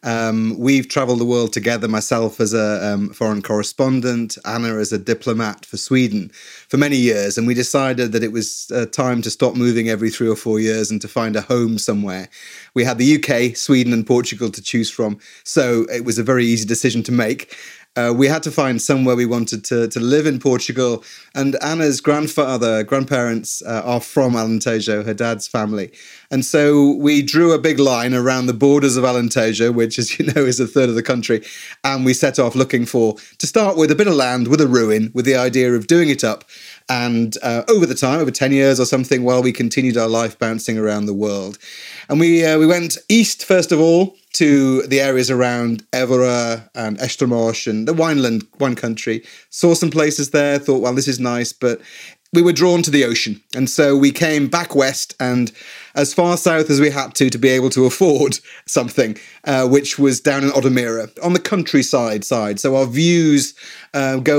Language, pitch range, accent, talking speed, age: English, 115-140 Hz, British, 210 wpm, 30-49